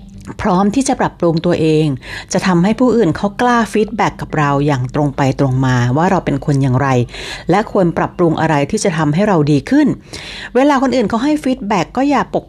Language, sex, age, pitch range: Thai, female, 60-79, 150-210 Hz